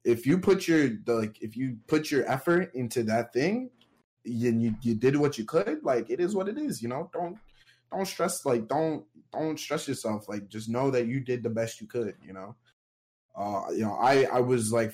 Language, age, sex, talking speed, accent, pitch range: English, 20-39, male, 225 wpm, American, 105-125 Hz